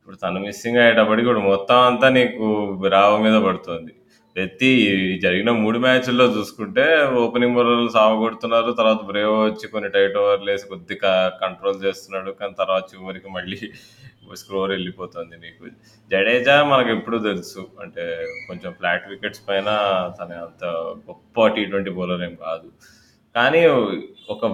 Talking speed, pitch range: 135 wpm, 95-120 Hz